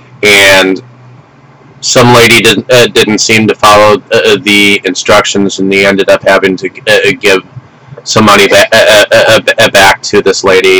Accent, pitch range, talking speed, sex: American, 95-130 Hz, 160 wpm, male